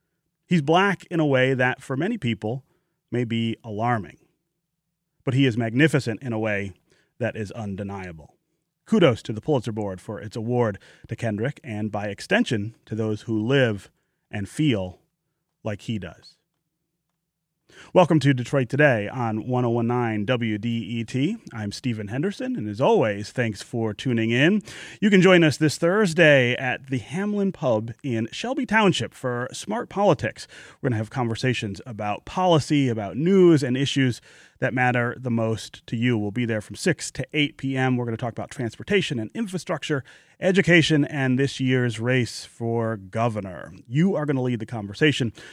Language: English